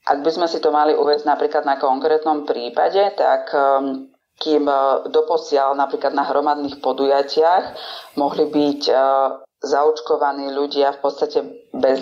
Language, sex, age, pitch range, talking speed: Slovak, female, 30-49, 135-150 Hz, 140 wpm